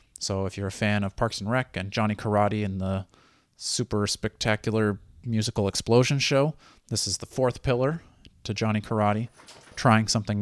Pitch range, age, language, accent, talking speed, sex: 100-120 Hz, 30-49, English, American, 165 wpm, male